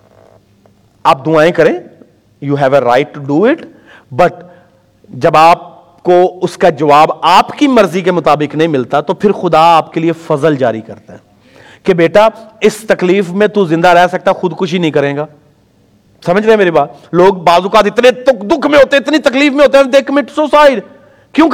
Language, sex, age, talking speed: Urdu, male, 40-59, 180 wpm